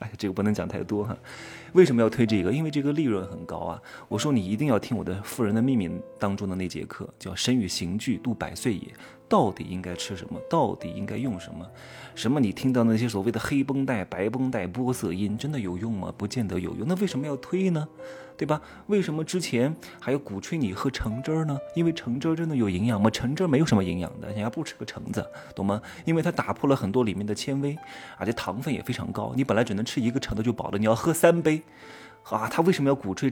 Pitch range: 105-155 Hz